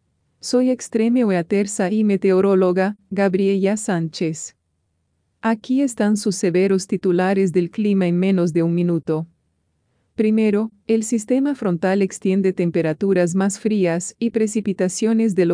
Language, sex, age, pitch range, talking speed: English, female, 40-59, 175-215 Hz, 120 wpm